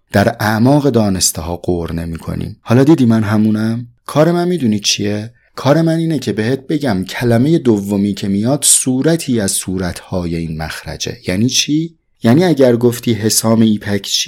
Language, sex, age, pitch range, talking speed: English, male, 30-49, 100-135 Hz, 160 wpm